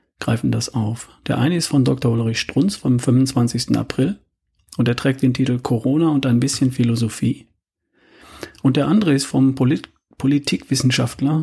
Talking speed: 160 wpm